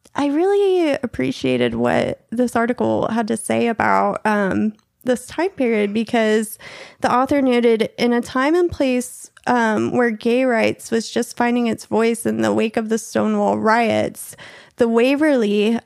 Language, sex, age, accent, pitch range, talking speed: English, female, 20-39, American, 220-270 Hz, 155 wpm